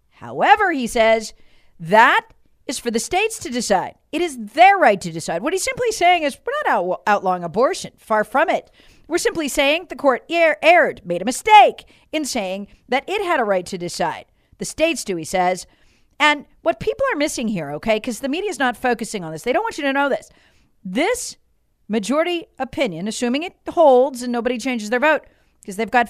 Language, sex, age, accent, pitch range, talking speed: English, female, 40-59, American, 215-340 Hz, 200 wpm